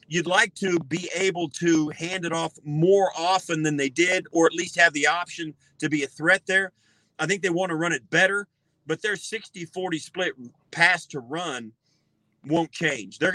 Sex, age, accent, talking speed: male, 40-59, American, 200 wpm